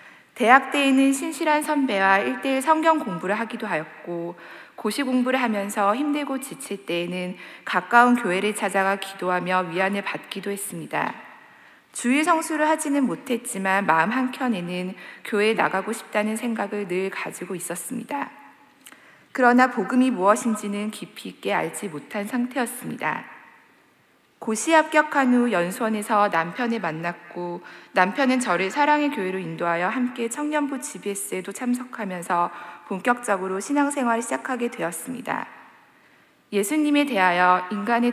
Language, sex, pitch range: Korean, female, 185-255 Hz